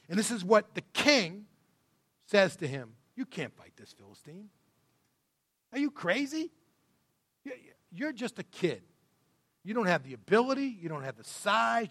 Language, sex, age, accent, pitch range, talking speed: English, male, 40-59, American, 160-235 Hz, 155 wpm